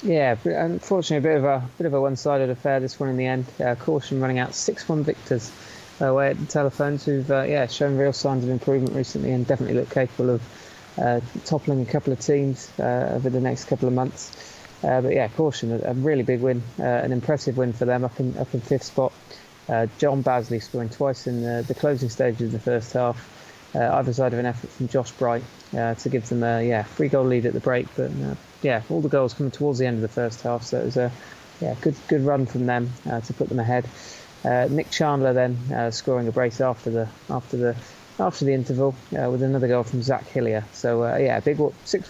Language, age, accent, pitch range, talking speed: English, 20-39, British, 120-140 Hz, 240 wpm